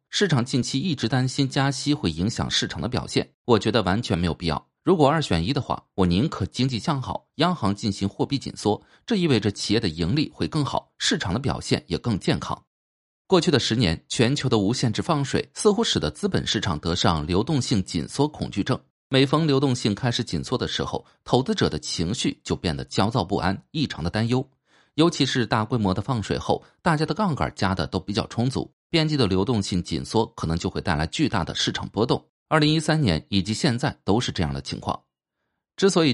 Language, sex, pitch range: Chinese, male, 95-140 Hz